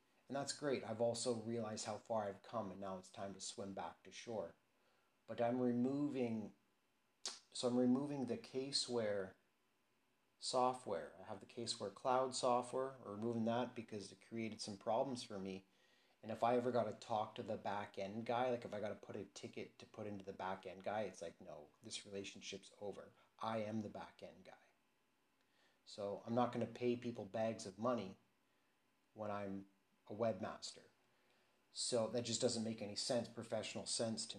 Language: English